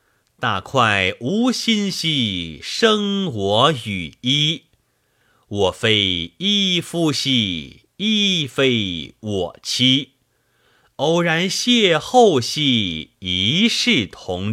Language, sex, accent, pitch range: Chinese, male, native, 105-170 Hz